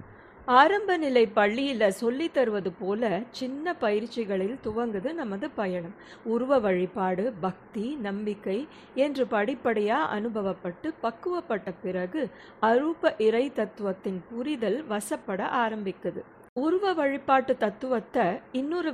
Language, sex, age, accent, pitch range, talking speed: Tamil, female, 50-69, native, 200-265 Hz, 90 wpm